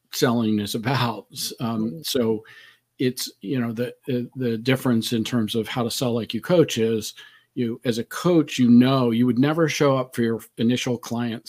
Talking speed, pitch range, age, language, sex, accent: 190 wpm, 110-130 Hz, 40-59, English, male, American